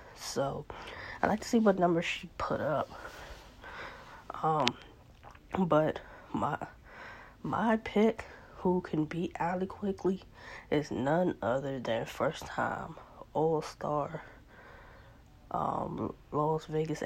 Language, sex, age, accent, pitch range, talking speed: English, female, 20-39, American, 140-185 Hz, 100 wpm